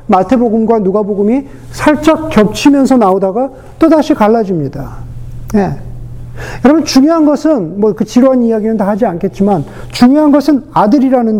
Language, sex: Korean, male